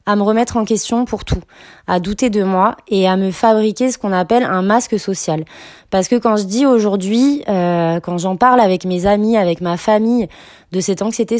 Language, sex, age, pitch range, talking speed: French, female, 20-39, 175-230 Hz, 210 wpm